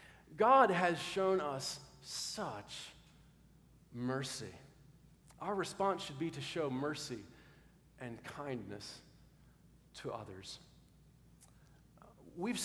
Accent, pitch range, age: American, 120-155 Hz, 40-59